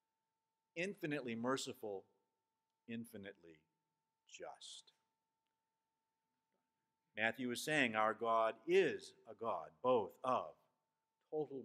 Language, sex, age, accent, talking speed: English, male, 50-69, American, 75 wpm